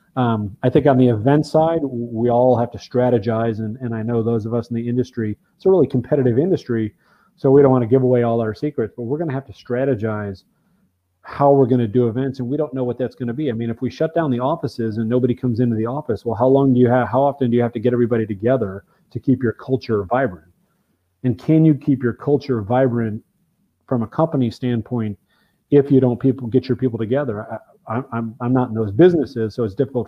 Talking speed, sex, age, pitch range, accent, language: 235 wpm, male, 30-49, 115-135 Hz, American, English